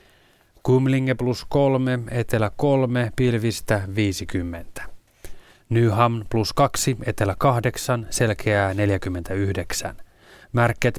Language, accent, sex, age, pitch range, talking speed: Finnish, native, male, 30-49, 105-130 Hz, 80 wpm